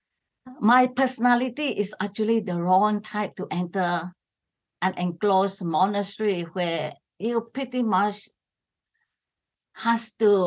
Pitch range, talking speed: 180-230 Hz, 105 wpm